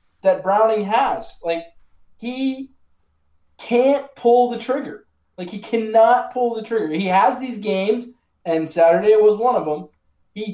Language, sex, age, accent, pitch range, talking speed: English, male, 20-39, American, 160-220 Hz, 155 wpm